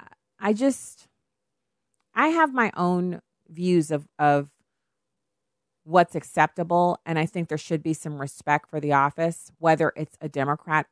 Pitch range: 145-190 Hz